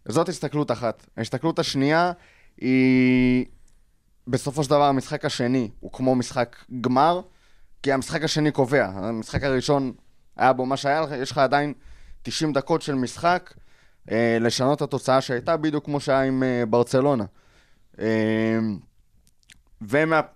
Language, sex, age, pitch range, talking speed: Hebrew, male, 20-39, 120-155 Hz, 140 wpm